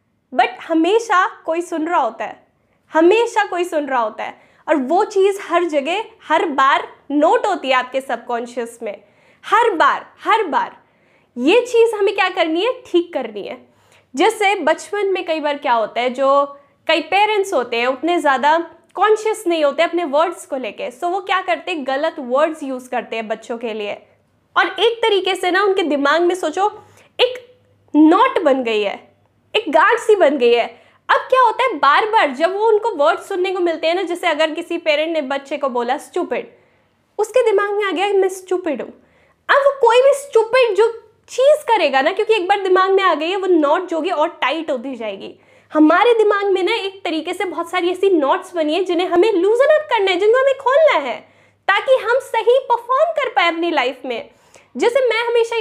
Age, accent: 10-29, native